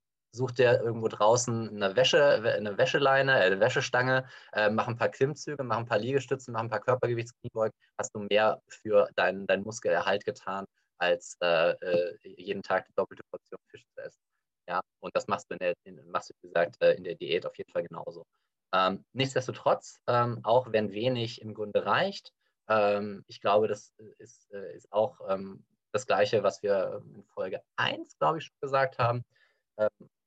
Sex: male